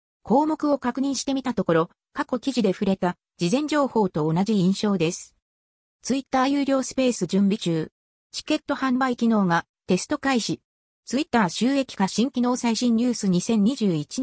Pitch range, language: 180-260 Hz, Japanese